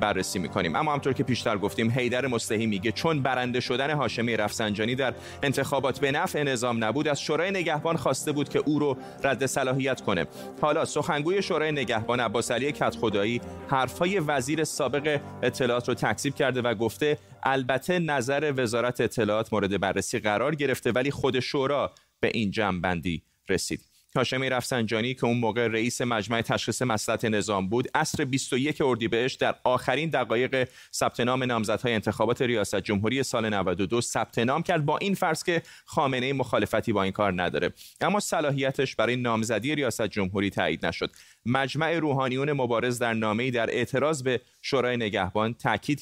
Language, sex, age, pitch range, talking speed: Persian, male, 30-49, 115-140 Hz, 155 wpm